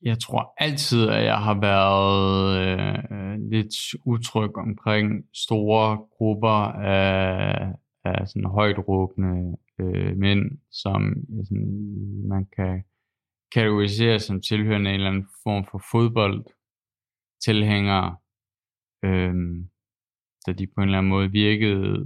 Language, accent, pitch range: Danish, native, 95-110 Hz